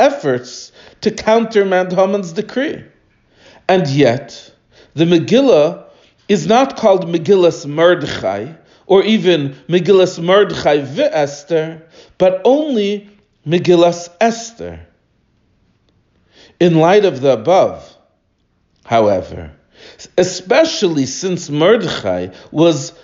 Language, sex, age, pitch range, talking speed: English, male, 40-59, 125-195 Hz, 90 wpm